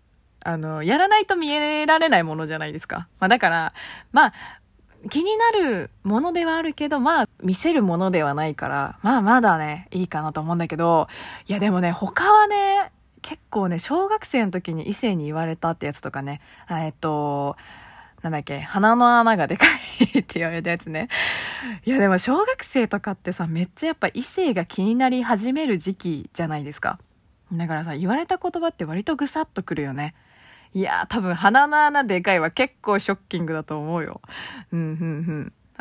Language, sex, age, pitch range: Japanese, female, 20-39, 160-255 Hz